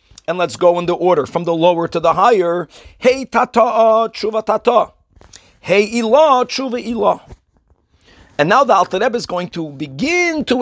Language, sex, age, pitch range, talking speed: English, male, 50-69, 175-230 Hz, 155 wpm